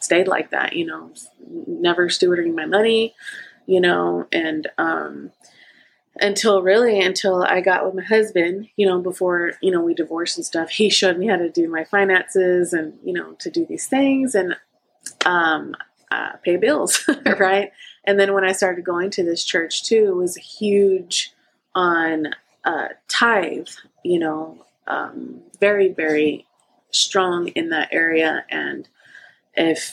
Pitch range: 165-215 Hz